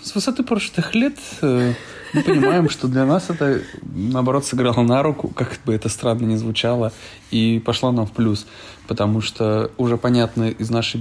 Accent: native